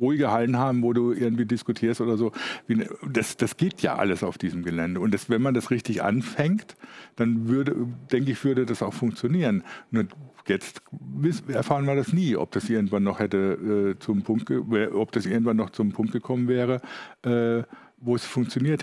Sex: male